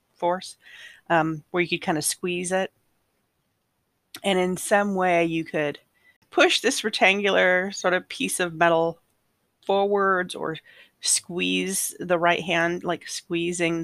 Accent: American